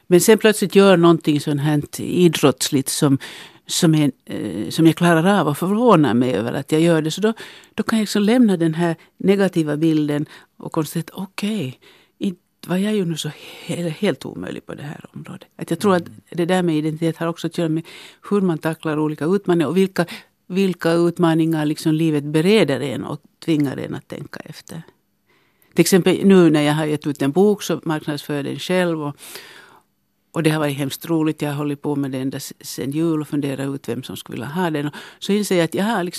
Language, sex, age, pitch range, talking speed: Finnish, female, 60-79, 150-180 Hz, 210 wpm